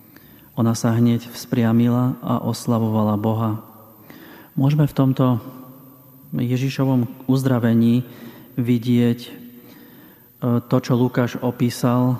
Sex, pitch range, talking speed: male, 110-120 Hz, 85 wpm